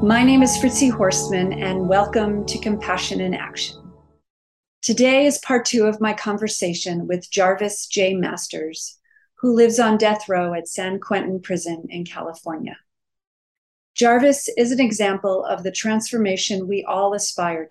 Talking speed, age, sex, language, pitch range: 145 wpm, 40-59, female, English, 180-215 Hz